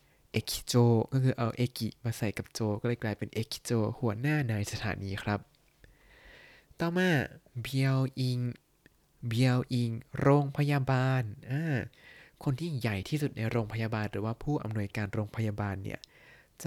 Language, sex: Thai, male